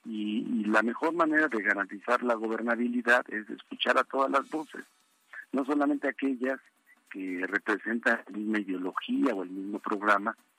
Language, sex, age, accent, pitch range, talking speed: Spanish, male, 50-69, Mexican, 105-140 Hz, 145 wpm